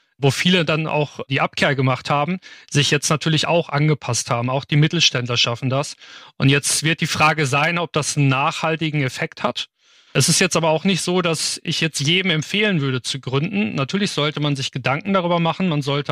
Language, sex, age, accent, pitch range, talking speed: German, male, 40-59, German, 140-165 Hz, 205 wpm